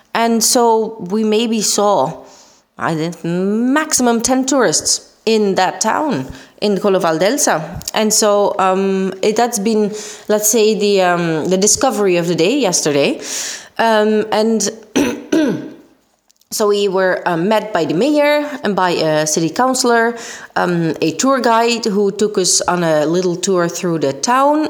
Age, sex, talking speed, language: 20-39, female, 145 wpm, Italian